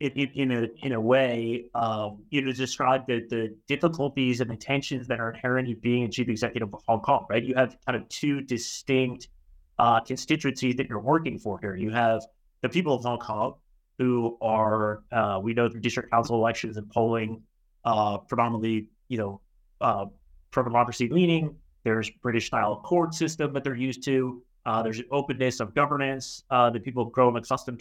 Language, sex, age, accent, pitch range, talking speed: English, male, 30-49, American, 110-130 Hz, 185 wpm